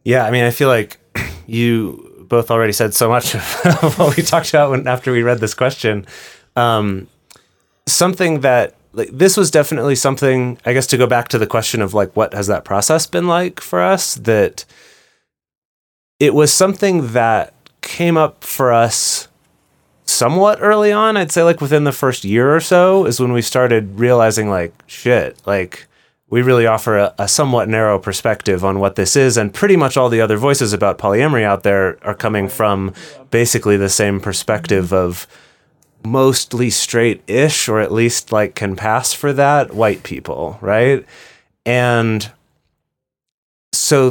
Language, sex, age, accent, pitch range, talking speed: English, male, 30-49, American, 105-145 Hz, 170 wpm